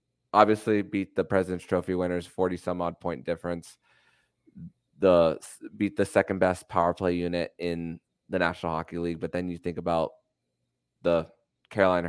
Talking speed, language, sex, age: 155 wpm, English, male, 20-39